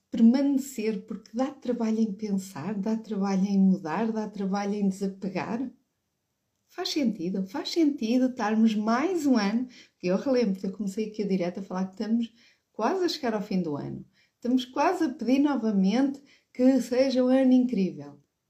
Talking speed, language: 165 wpm, Portuguese